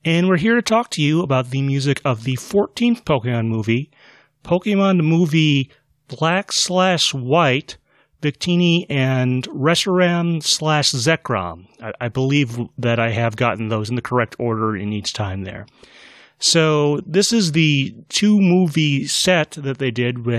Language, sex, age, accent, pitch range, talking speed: English, male, 30-49, American, 120-160 Hz, 145 wpm